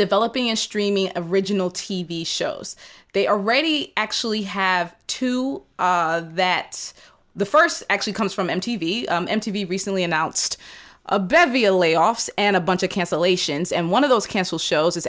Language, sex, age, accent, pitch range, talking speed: English, female, 20-39, American, 170-205 Hz, 155 wpm